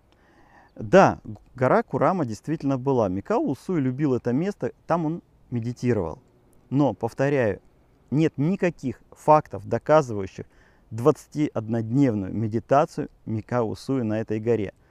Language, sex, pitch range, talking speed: Russian, male, 115-155 Hz, 95 wpm